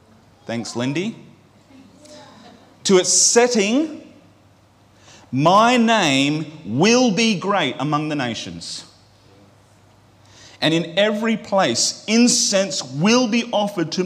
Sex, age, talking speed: male, 30-49, 95 wpm